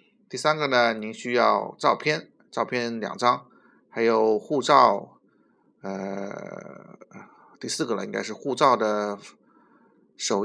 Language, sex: Chinese, male